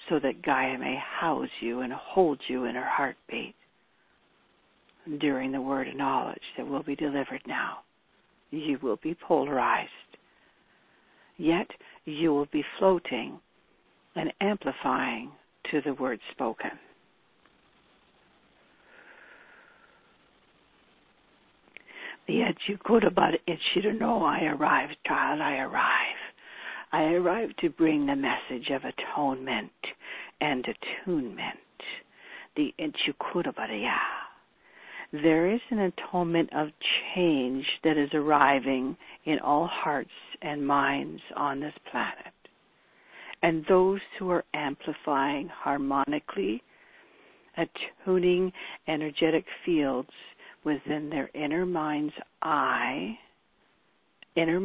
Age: 60-79